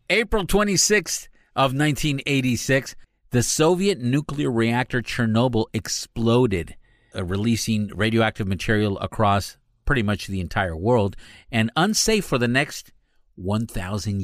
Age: 50-69